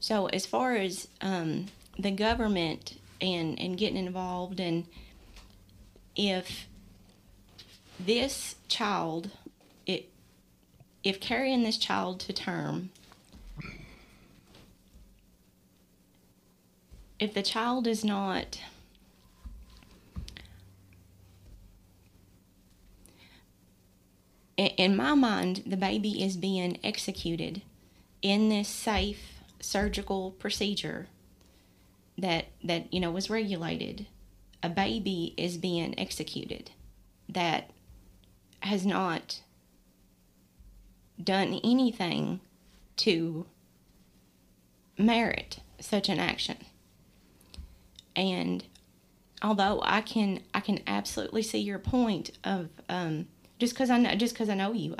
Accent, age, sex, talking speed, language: American, 30-49, female, 90 wpm, English